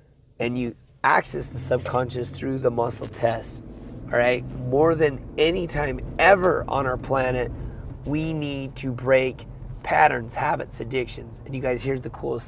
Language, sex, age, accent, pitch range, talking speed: English, male, 30-49, American, 120-140 Hz, 155 wpm